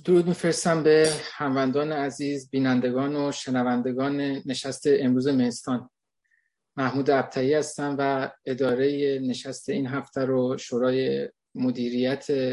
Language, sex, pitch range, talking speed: Persian, male, 130-150 Hz, 110 wpm